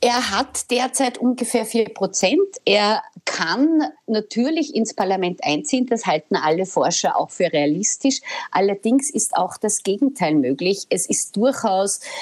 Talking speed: 135 wpm